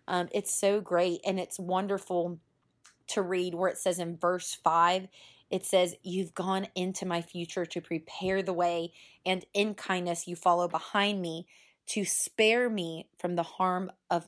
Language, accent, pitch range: English, American, 175-200 Hz